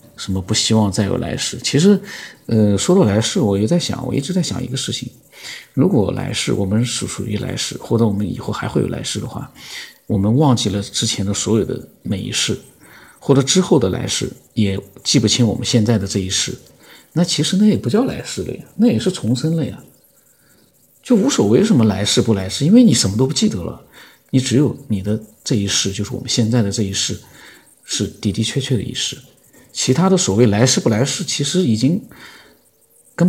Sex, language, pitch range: male, Chinese, 105-140 Hz